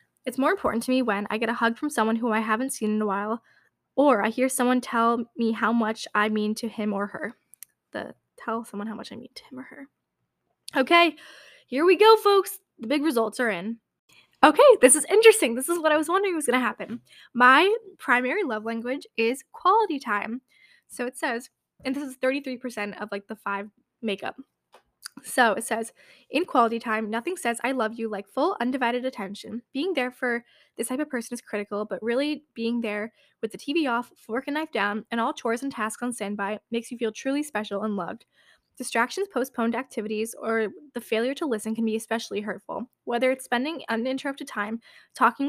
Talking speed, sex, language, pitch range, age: 205 wpm, female, English, 220-270 Hz, 10-29